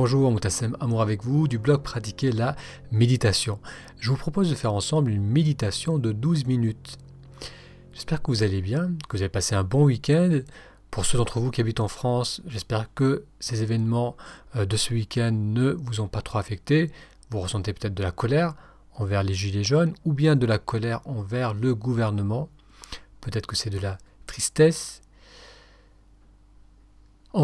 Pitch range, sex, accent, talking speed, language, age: 100-135 Hz, male, French, 175 wpm, French, 40-59